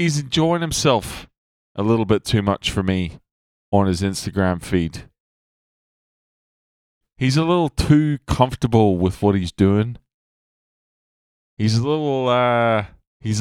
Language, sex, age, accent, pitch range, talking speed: English, male, 20-39, American, 85-115 Hz, 125 wpm